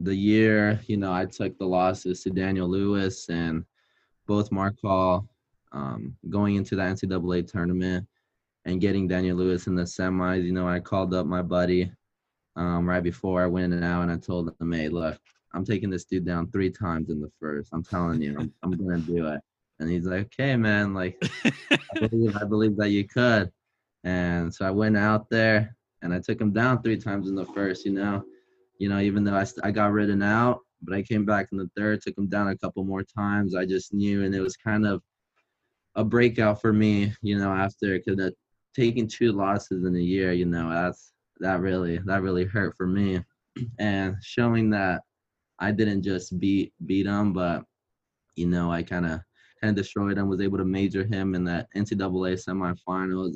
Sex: male